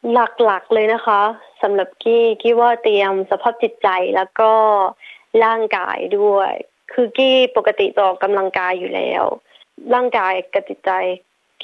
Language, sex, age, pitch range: Thai, female, 20-39, 195-240 Hz